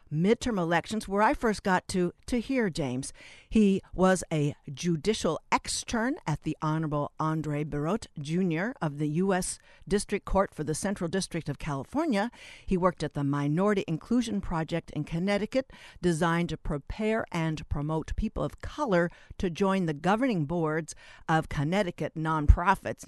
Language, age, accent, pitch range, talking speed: English, 60-79, American, 155-210 Hz, 150 wpm